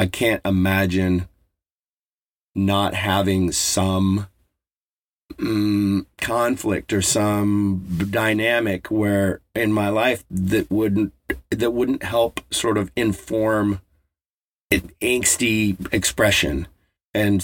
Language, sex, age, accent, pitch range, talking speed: English, male, 40-59, American, 85-100 Hz, 95 wpm